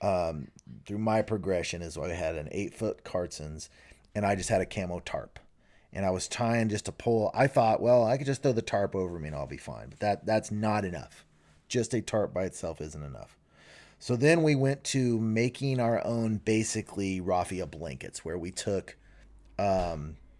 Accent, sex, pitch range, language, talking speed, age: American, male, 95-120 Hz, English, 195 wpm, 30-49